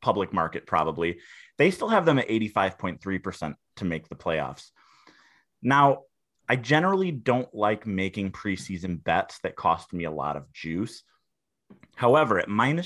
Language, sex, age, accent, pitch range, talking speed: English, male, 30-49, American, 90-110 Hz, 145 wpm